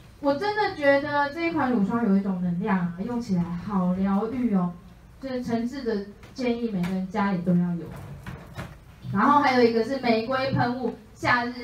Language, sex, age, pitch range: Chinese, female, 20-39, 190-275 Hz